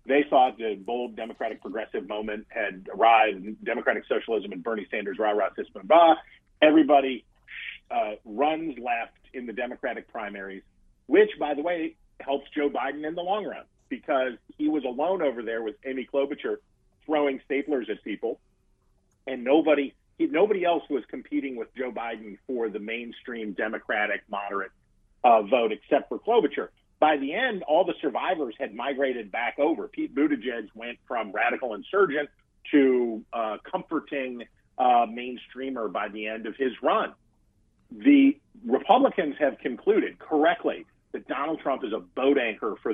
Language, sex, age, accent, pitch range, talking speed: English, male, 40-59, American, 110-155 Hz, 155 wpm